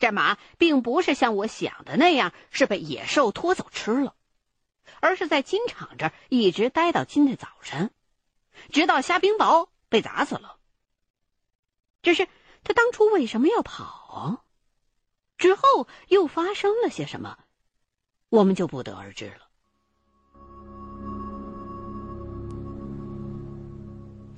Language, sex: Chinese, female